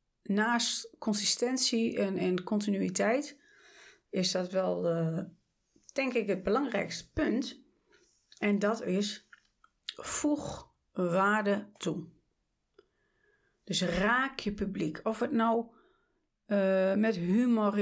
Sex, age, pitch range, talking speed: female, 40-59, 185-260 Hz, 100 wpm